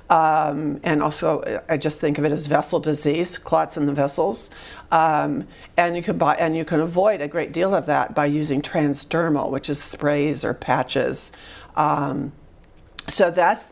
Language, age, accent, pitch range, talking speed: English, 50-69, American, 145-165 Hz, 175 wpm